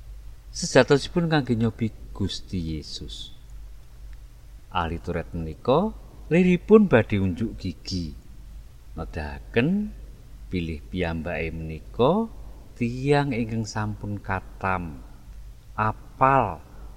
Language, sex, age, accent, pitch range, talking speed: Indonesian, male, 50-69, native, 75-110 Hz, 80 wpm